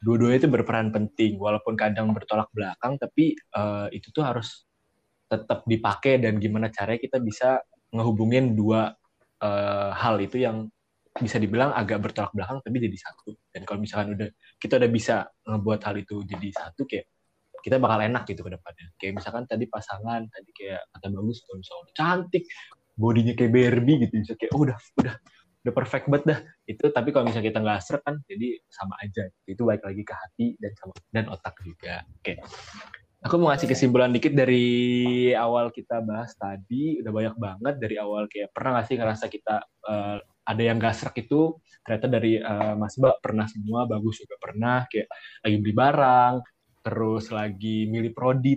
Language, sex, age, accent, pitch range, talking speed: Indonesian, male, 20-39, native, 105-125 Hz, 175 wpm